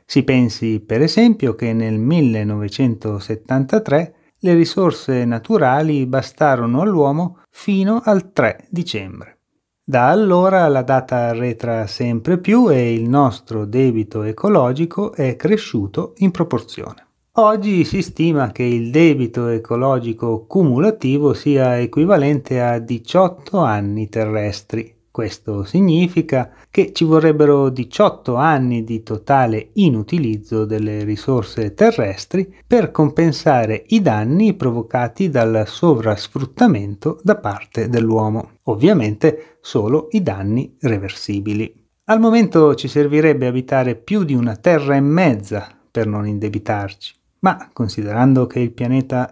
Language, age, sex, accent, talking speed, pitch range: Italian, 30-49, male, native, 115 wpm, 110-160 Hz